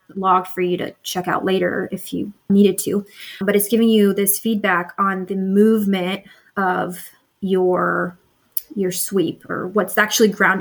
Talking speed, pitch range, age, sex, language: 160 wpm, 185-210 Hz, 20-39, female, English